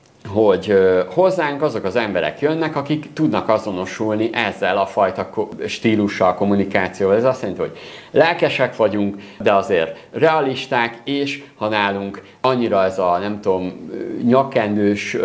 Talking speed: 125 wpm